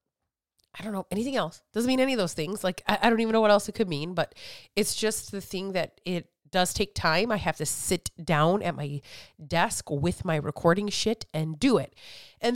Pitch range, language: 165-215 Hz, English